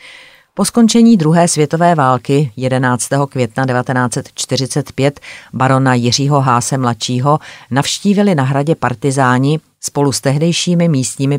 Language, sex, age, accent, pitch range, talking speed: Czech, female, 40-59, native, 120-145 Hz, 105 wpm